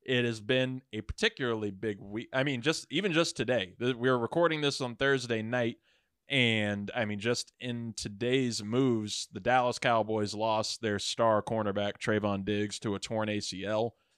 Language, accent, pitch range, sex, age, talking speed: English, American, 105-130 Hz, male, 20-39, 170 wpm